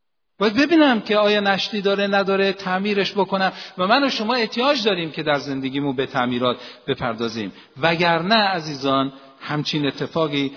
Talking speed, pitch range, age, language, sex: 150 wpm, 150-205 Hz, 50-69, Persian, male